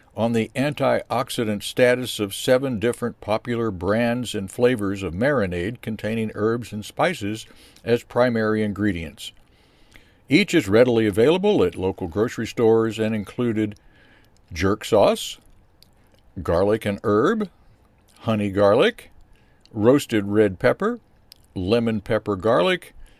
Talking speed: 110 wpm